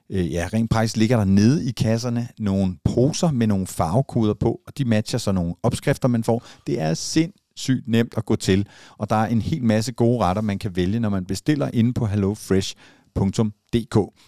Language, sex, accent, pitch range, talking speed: Danish, male, native, 100-125 Hz, 200 wpm